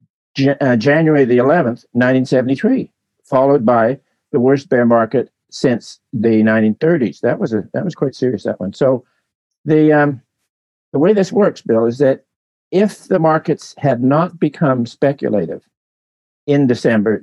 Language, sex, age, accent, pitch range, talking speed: English, male, 50-69, American, 110-140 Hz, 155 wpm